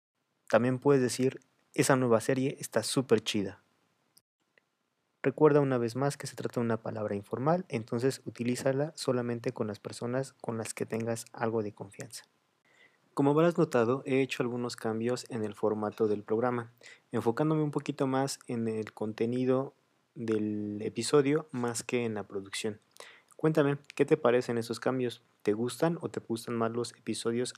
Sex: male